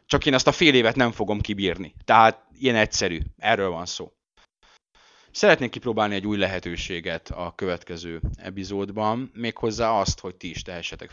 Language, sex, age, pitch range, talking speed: Hungarian, male, 30-49, 100-130 Hz, 155 wpm